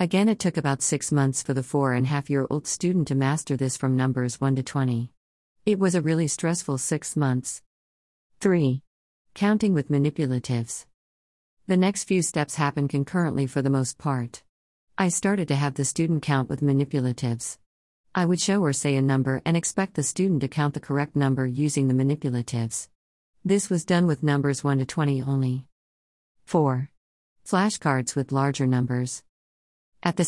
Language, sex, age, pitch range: English, female, 50-69, 130-165 Hz